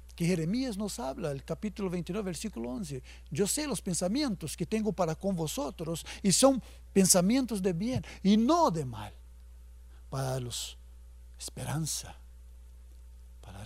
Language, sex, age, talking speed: English, male, 60-79, 130 wpm